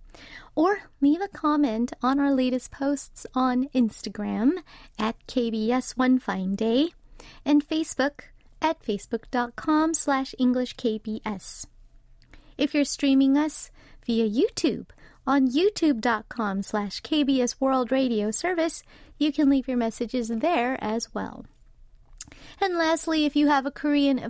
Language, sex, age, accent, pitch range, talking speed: English, female, 30-49, American, 235-300 Hz, 125 wpm